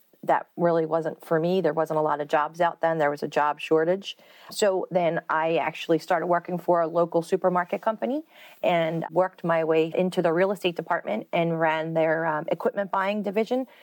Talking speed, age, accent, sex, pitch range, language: 195 wpm, 30-49, American, female, 160-185 Hz, English